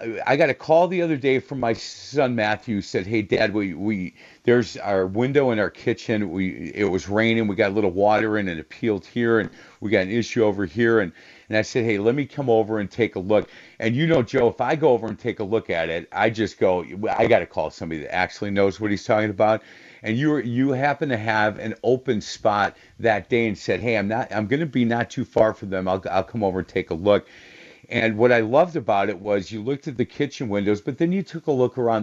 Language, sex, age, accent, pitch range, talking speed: English, male, 50-69, American, 100-120 Hz, 260 wpm